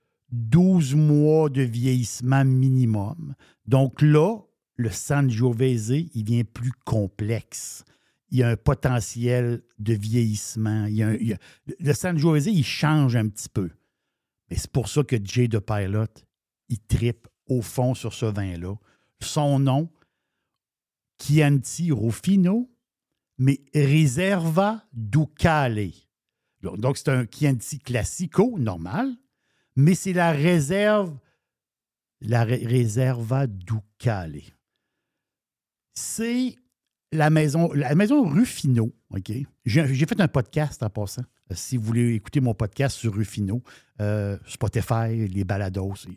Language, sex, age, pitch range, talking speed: French, male, 60-79, 110-150 Hz, 125 wpm